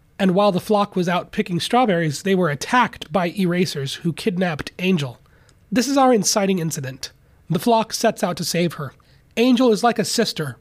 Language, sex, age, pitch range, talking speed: English, male, 30-49, 165-215 Hz, 185 wpm